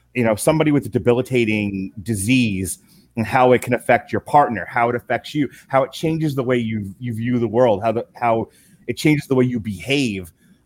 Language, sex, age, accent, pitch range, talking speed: English, male, 30-49, American, 110-150 Hz, 210 wpm